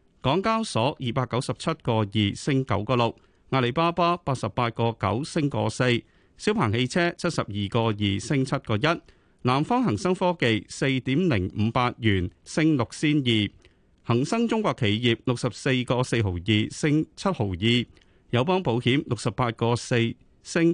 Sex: male